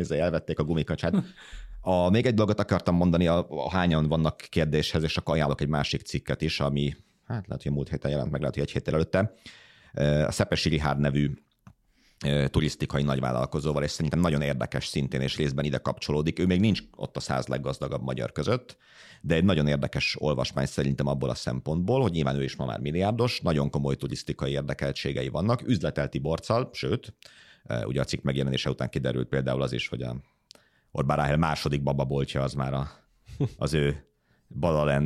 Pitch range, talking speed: 70-85 Hz, 175 wpm